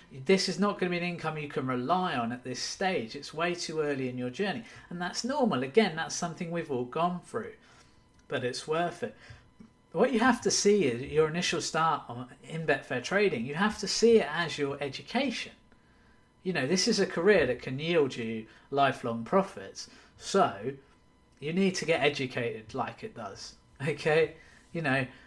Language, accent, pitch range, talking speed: English, British, 130-175 Hz, 190 wpm